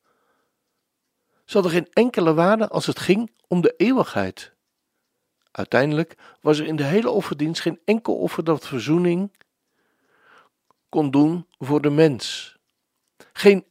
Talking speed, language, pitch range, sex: 125 wpm, Dutch, 150-195 Hz, male